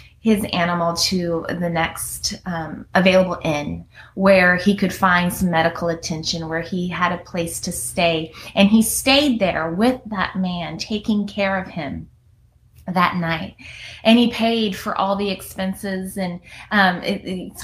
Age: 20-39